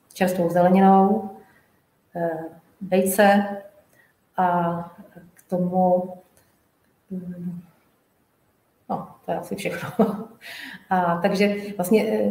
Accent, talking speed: native, 70 wpm